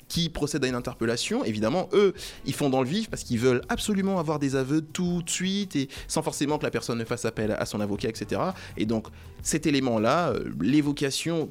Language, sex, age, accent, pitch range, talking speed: French, male, 20-39, French, 120-170 Hz, 210 wpm